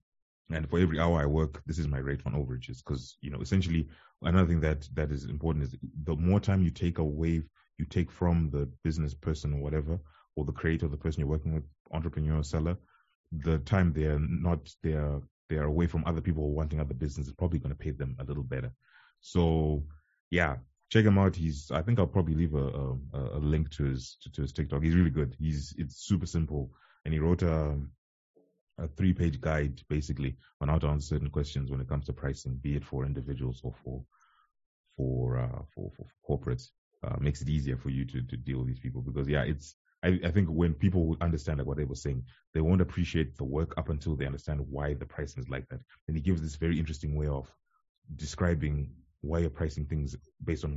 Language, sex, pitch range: English, male, 70-80 Hz